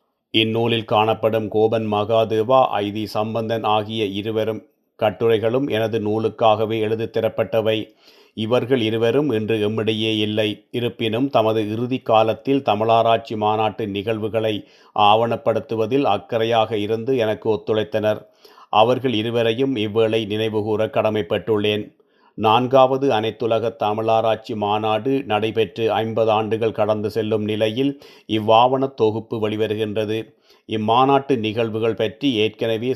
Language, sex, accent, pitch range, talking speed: Tamil, male, native, 110-115 Hz, 95 wpm